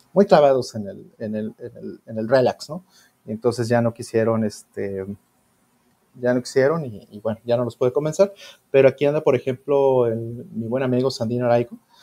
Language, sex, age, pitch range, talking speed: Spanish, male, 30-49, 110-145 Hz, 200 wpm